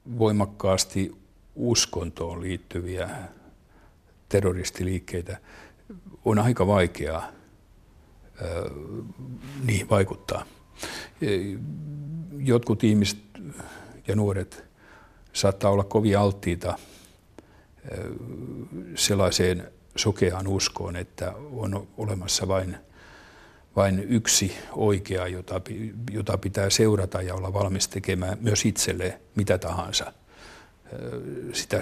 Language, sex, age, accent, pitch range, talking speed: Finnish, male, 60-79, native, 95-110 Hz, 75 wpm